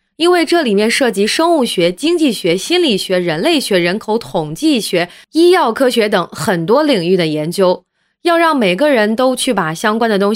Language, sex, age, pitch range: Chinese, female, 20-39, 190-270 Hz